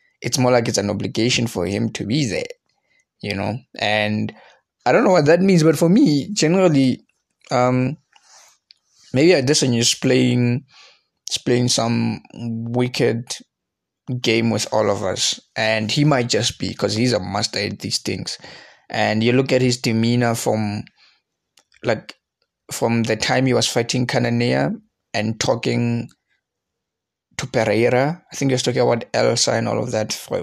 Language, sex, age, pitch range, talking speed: English, male, 20-39, 110-135 Hz, 160 wpm